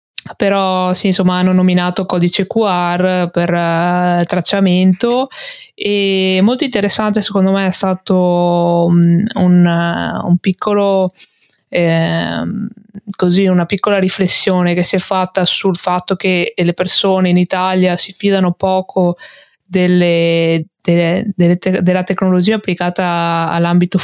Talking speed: 115 wpm